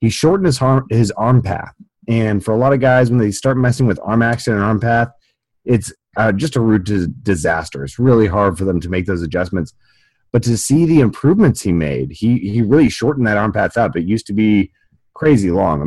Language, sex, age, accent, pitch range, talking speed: English, male, 30-49, American, 95-120 Hz, 225 wpm